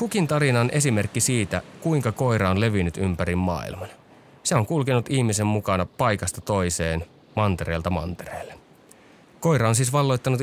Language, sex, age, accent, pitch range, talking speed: Finnish, male, 30-49, native, 90-125 Hz, 130 wpm